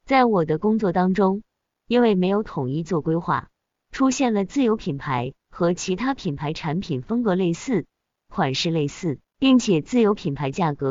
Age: 20-39